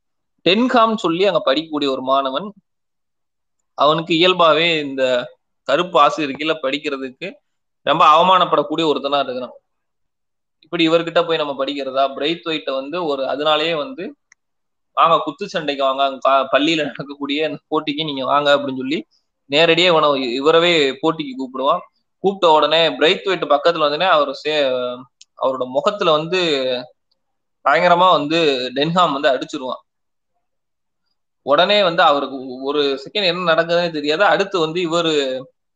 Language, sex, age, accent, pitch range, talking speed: Tamil, male, 20-39, native, 140-170 Hz, 115 wpm